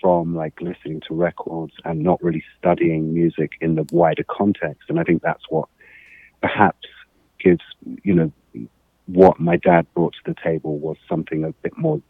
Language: English